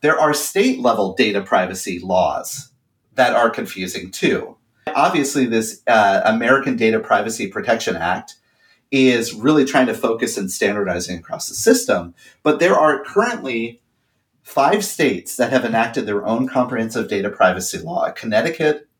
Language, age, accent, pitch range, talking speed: English, 30-49, American, 110-135 Hz, 140 wpm